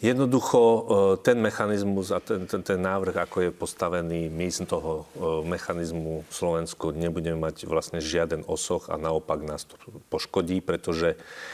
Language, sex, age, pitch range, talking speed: Slovak, male, 40-59, 80-95 Hz, 145 wpm